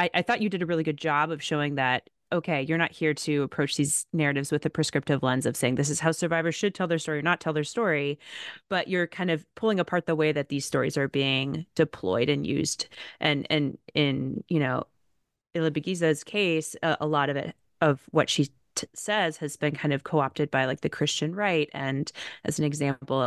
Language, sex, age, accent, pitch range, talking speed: English, female, 30-49, American, 145-170 Hz, 225 wpm